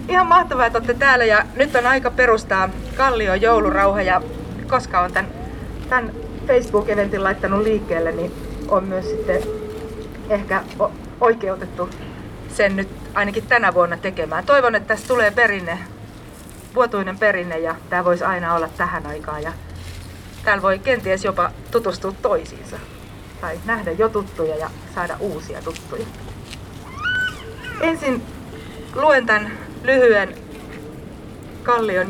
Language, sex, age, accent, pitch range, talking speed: Finnish, female, 30-49, native, 165-220 Hz, 125 wpm